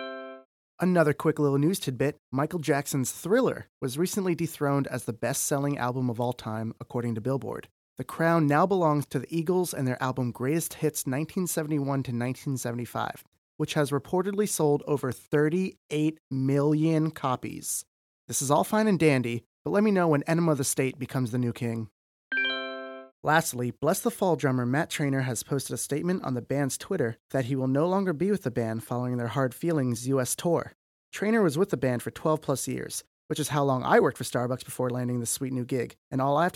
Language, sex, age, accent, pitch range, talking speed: English, male, 30-49, American, 125-160 Hz, 190 wpm